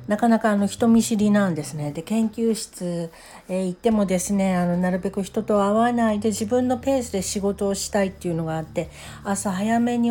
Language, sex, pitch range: Japanese, female, 170-230 Hz